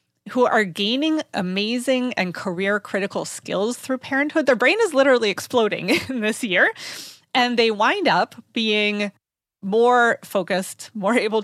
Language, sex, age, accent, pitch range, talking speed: English, female, 30-49, American, 185-240 Hz, 130 wpm